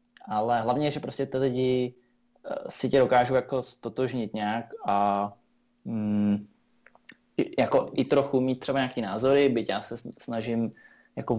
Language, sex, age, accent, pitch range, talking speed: Czech, male, 20-39, native, 110-125 Hz, 135 wpm